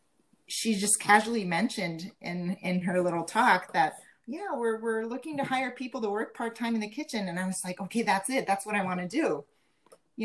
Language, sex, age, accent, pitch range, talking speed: English, female, 30-49, American, 175-215 Hz, 215 wpm